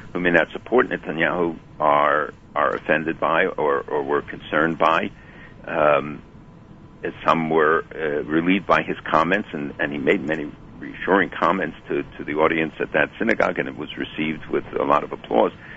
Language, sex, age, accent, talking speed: English, male, 60-79, American, 185 wpm